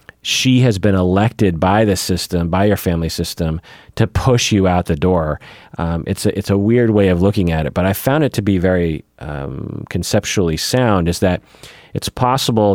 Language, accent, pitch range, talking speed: English, American, 85-105 Hz, 200 wpm